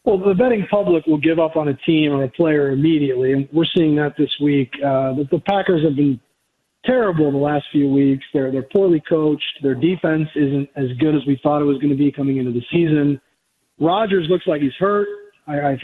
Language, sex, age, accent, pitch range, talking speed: English, male, 40-59, American, 145-180 Hz, 220 wpm